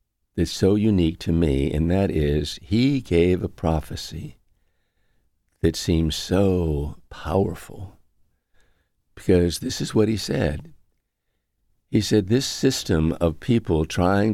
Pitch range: 80-105 Hz